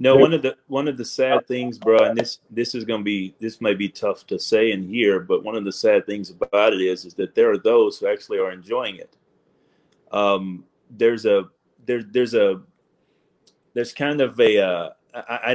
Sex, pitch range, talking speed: male, 120-165 Hz, 210 wpm